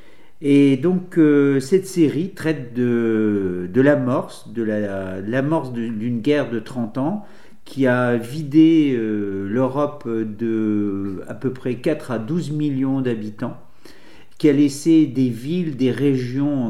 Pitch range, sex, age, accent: 110-140 Hz, male, 50-69, French